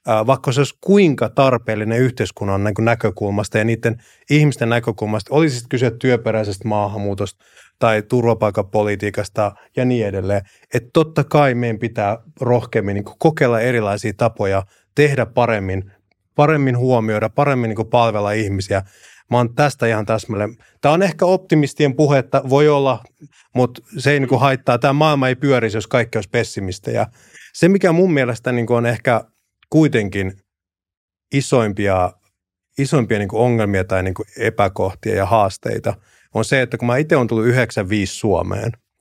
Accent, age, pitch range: native, 30-49, 105-140 Hz